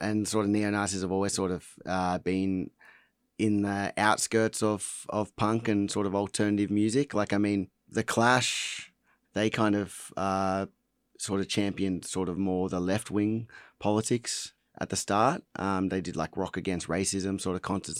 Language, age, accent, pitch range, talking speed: English, 30-49, Australian, 90-105 Hz, 180 wpm